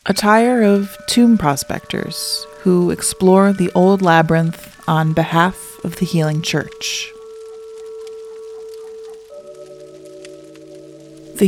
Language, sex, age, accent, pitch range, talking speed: English, female, 30-49, American, 150-195 Hz, 90 wpm